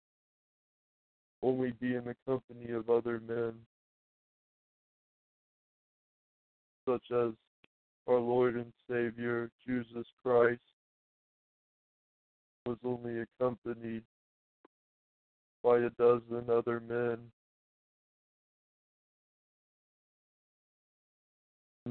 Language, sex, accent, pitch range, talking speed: English, male, American, 115-125 Hz, 70 wpm